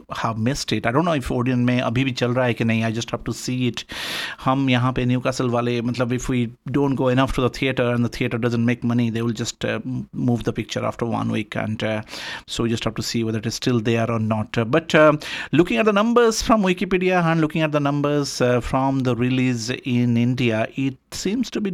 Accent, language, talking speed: native, Hindi, 245 wpm